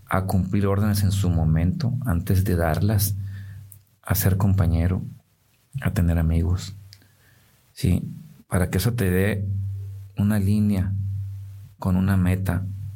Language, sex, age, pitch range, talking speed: Spanish, male, 50-69, 95-110 Hz, 120 wpm